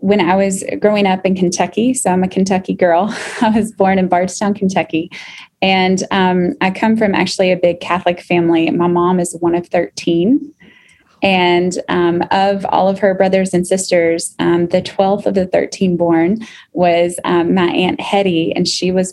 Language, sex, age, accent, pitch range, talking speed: English, female, 20-39, American, 175-195 Hz, 180 wpm